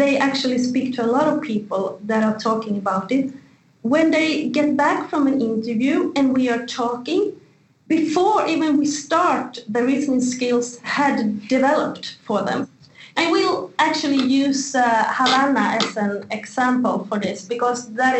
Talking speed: 160 wpm